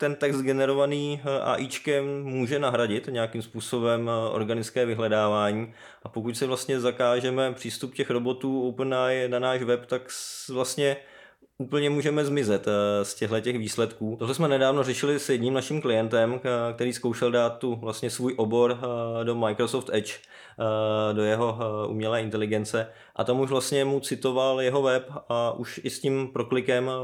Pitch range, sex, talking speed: 115-130 Hz, male, 145 wpm